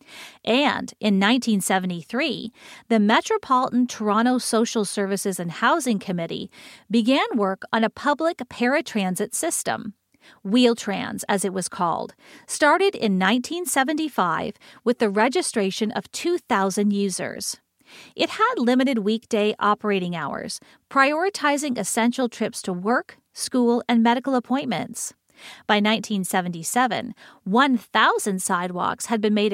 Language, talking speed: English, 110 wpm